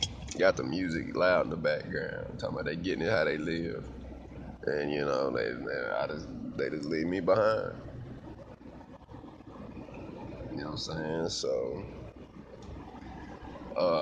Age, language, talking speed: 30-49, English, 150 wpm